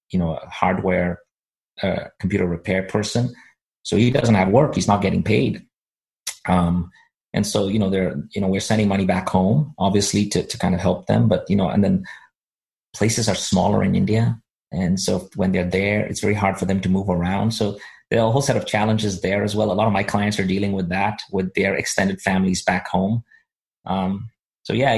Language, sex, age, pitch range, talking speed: English, male, 30-49, 95-110 Hz, 215 wpm